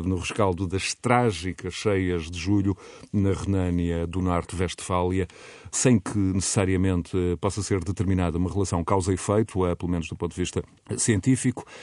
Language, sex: Portuguese, male